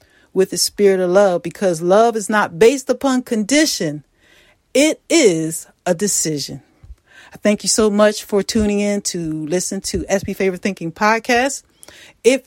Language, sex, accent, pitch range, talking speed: English, female, American, 185-240 Hz, 150 wpm